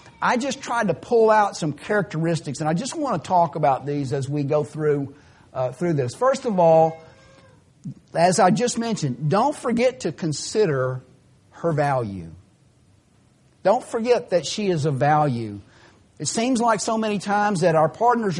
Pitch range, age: 140-210 Hz, 50-69